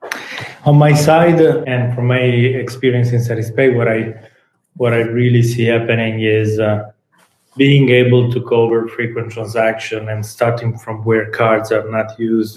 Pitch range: 110-125 Hz